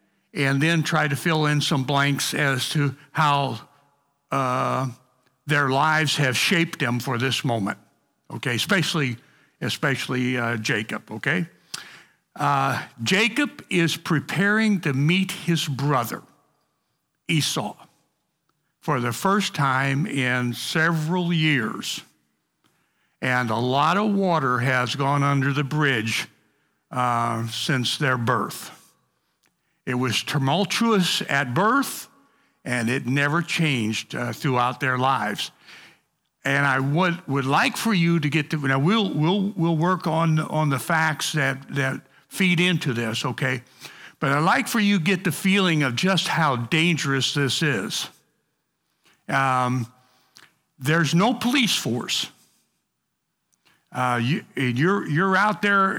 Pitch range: 130-170 Hz